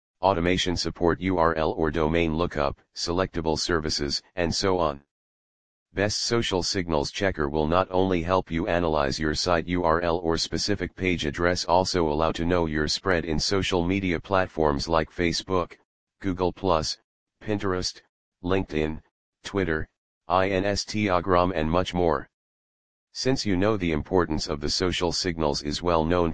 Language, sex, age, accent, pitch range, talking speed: English, male, 40-59, American, 80-95 Hz, 140 wpm